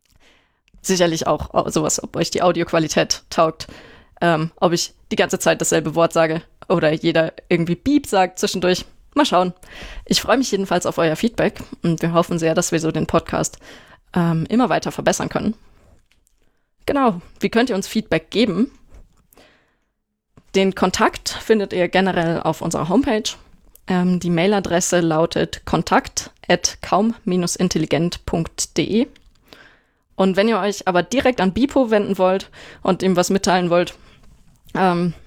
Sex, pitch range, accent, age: female, 170-205 Hz, German, 20-39